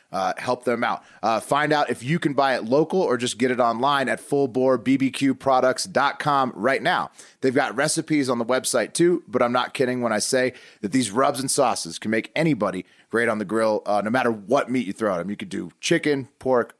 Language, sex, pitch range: English, male, 115-150 Hz